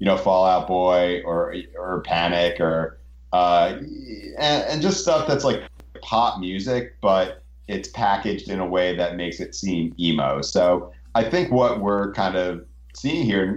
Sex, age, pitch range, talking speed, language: male, 30-49, 80-95 Hz, 165 wpm, English